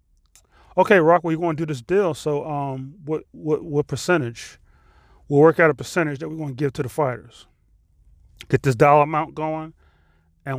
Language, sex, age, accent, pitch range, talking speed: English, male, 30-49, American, 130-165 Hz, 195 wpm